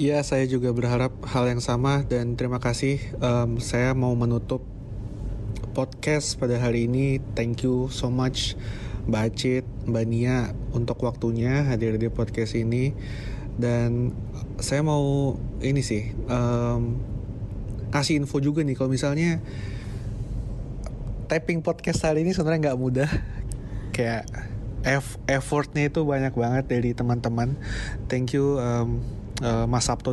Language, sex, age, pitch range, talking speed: Indonesian, male, 30-49, 110-130 Hz, 125 wpm